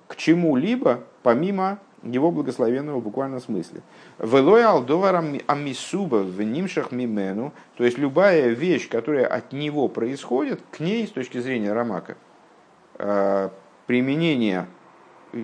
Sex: male